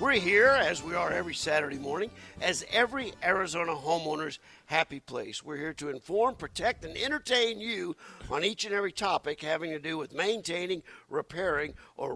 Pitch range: 150-205 Hz